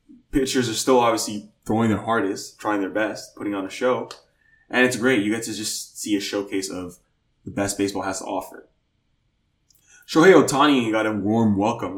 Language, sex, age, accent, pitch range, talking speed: English, male, 20-39, American, 100-130 Hz, 185 wpm